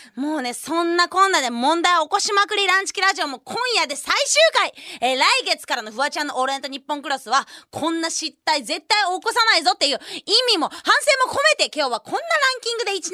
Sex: female